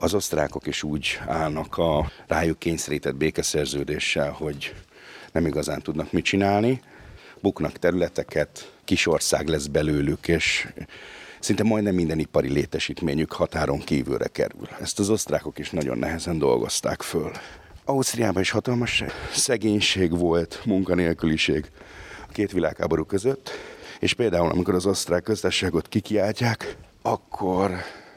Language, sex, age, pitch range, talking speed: Hungarian, male, 50-69, 80-110 Hz, 120 wpm